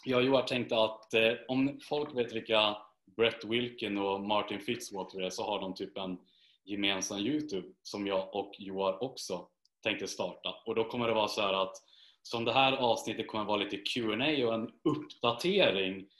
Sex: male